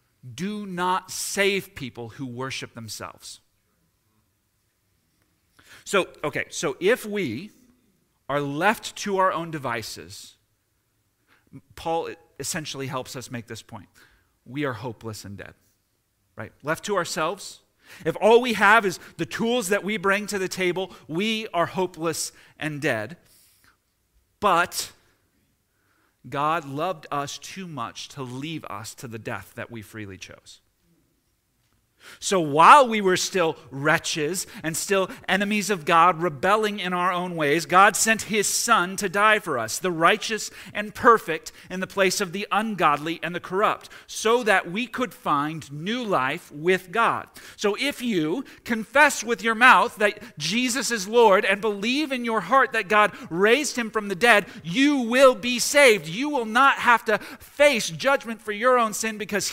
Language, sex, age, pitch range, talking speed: English, male, 40-59, 140-215 Hz, 155 wpm